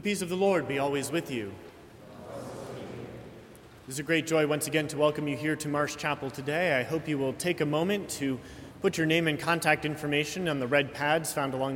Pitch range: 125-155 Hz